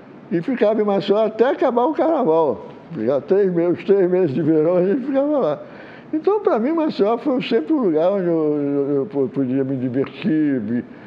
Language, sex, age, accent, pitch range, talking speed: English, male, 60-79, Brazilian, 140-210 Hz, 190 wpm